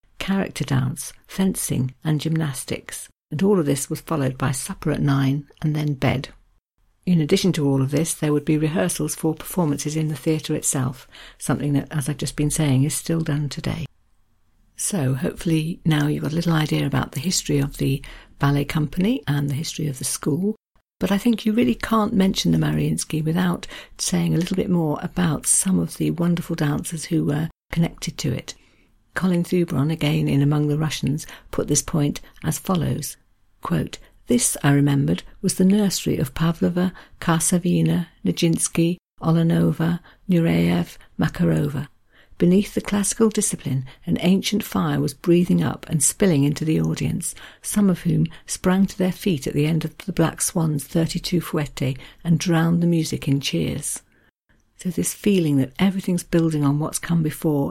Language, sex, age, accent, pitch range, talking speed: English, female, 60-79, British, 140-175 Hz, 170 wpm